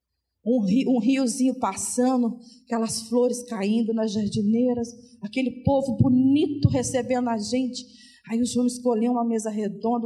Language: Portuguese